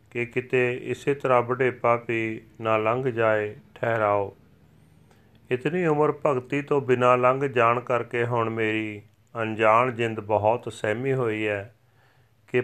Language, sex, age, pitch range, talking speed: Punjabi, male, 40-59, 110-125 Hz, 130 wpm